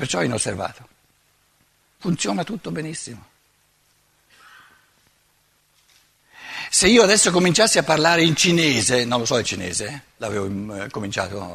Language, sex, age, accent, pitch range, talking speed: Italian, male, 60-79, native, 125-205 Hz, 110 wpm